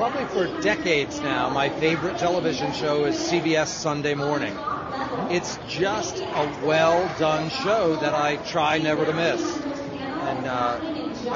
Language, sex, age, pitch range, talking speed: English, male, 40-59, 145-185 Hz, 130 wpm